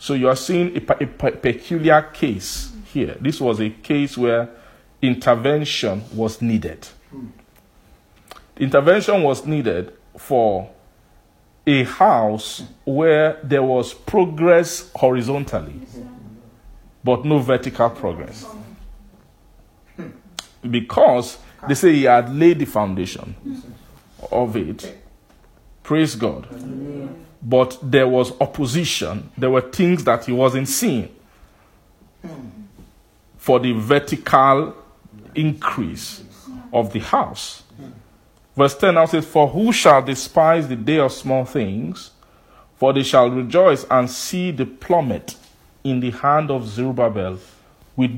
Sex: male